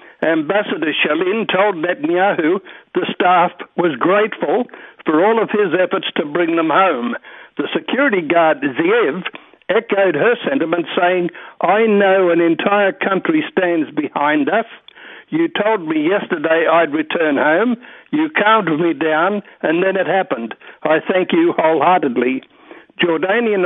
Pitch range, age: 165-225 Hz, 60-79